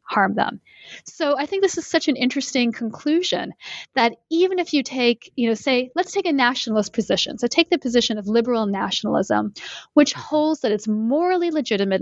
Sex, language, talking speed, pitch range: female, English, 185 wpm, 210-275 Hz